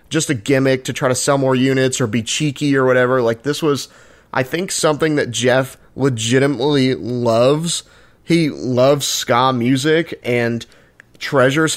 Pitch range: 120-140 Hz